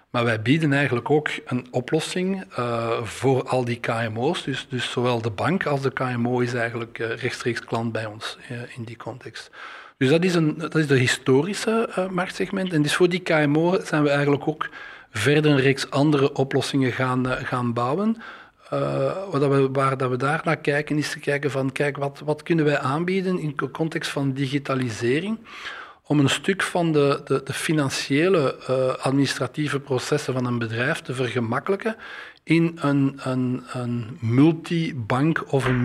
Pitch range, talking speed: 125-150 Hz, 170 wpm